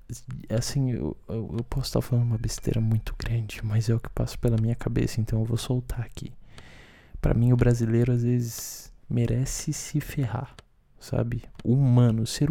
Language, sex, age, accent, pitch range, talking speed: Portuguese, male, 20-39, Brazilian, 115-145 Hz, 180 wpm